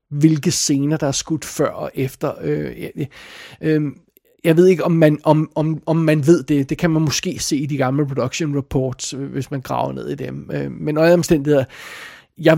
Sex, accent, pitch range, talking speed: male, native, 140-160 Hz, 185 wpm